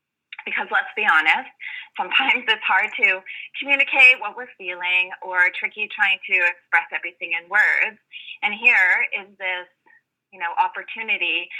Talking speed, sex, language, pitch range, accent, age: 140 wpm, female, English, 180-270 Hz, American, 30-49